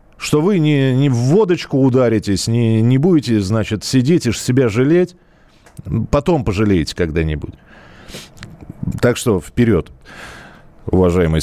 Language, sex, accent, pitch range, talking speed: Russian, male, native, 100-140 Hz, 115 wpm